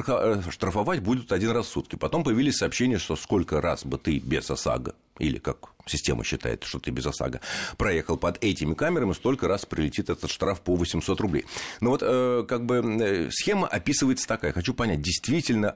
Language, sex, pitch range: Russian, male, 75-125 Hz